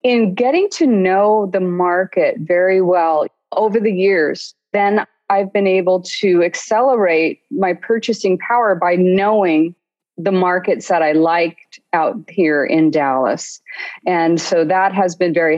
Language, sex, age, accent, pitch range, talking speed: English, female, 30-49, American, 160-200 Hz, 145 wpm